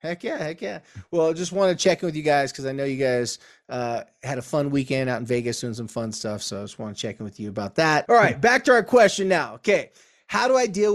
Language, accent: English, American